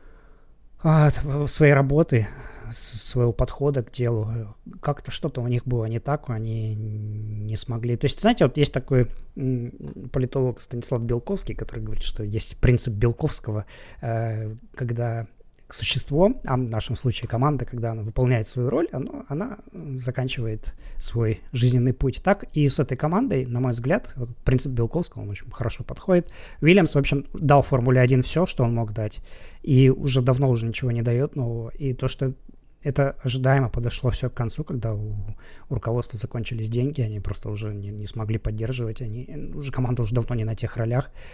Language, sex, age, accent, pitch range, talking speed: Russian, male, 20-39, native, 115-140 Hz, 160 wpm